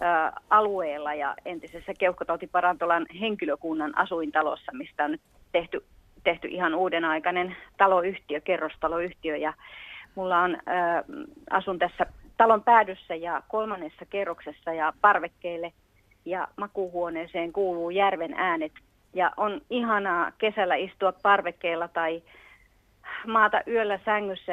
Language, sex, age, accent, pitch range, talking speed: Finnish, female, 30-49, native, 170-210 Hz, 105 wpm